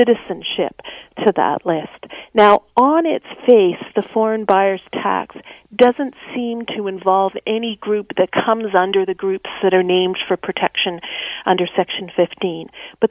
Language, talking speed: English, 145 wpm